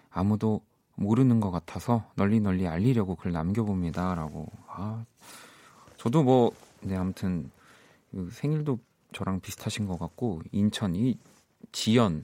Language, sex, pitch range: Korean, male, 90-120 Hz